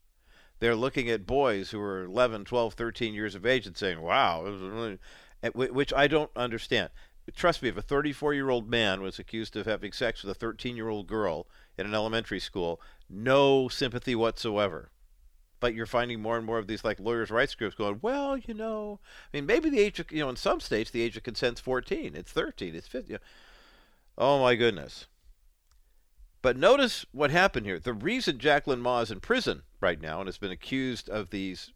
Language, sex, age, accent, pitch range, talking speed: English, male, 50-69, American, 100-130 Hz, 190 wpm